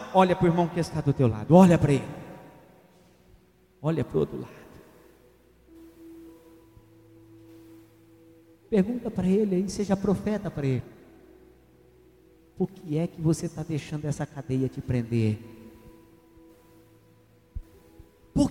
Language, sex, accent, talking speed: Portuguese, male, Brazilian, 120 wpm